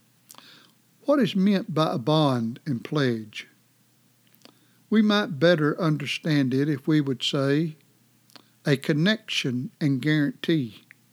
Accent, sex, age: American, male, 60-79